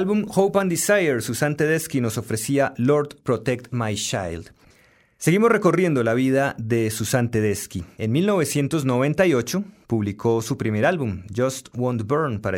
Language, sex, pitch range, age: Spanish, male, 110-155 Hz, 30-49